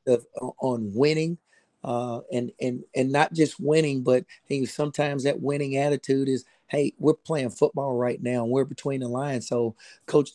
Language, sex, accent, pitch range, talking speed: English, male, American, 125-140 Hz, 175 wpm